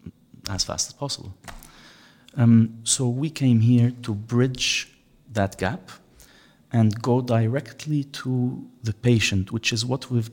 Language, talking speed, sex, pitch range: English, 135 wpm, male, 100-125 Hz